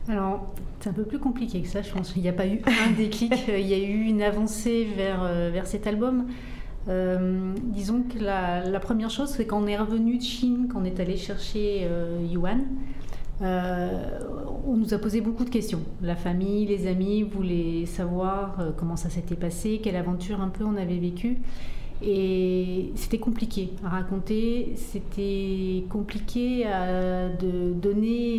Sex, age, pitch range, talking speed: female, 30-49, 180-215 Hz, 175 wpm